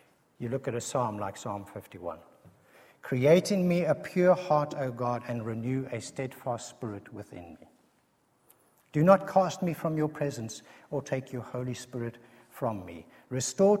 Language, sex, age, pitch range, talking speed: English, male, 60-79, 115-150 Hz, 165 wpm